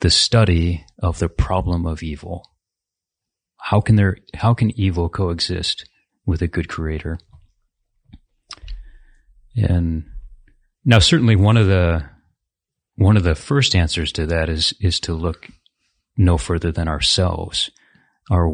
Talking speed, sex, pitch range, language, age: 130 wpm, male, 80-100 Hz, English, 30-49